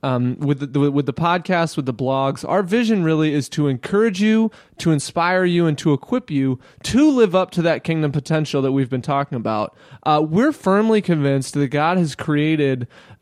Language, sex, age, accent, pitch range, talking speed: English, male, 20-39, American, 145-190 Hz, 195 wpm